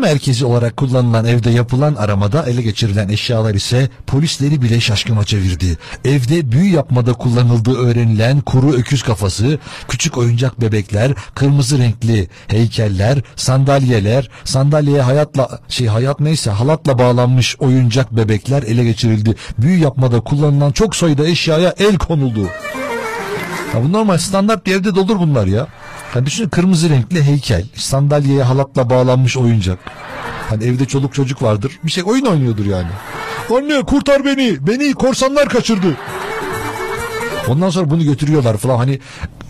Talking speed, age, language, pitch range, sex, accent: 130 wpm, 60-79, Turkish, 115-155 Hz, male, native